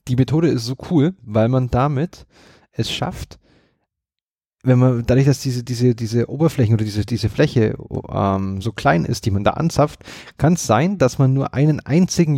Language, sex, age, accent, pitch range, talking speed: German, male, 30-49, German, 105-140 Hz, 180 wpm